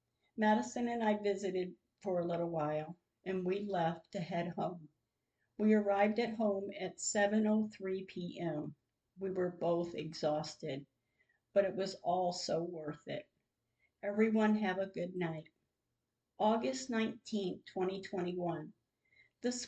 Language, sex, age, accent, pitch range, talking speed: English, female, 50-69, American, 175-215 Hz, 125 wpm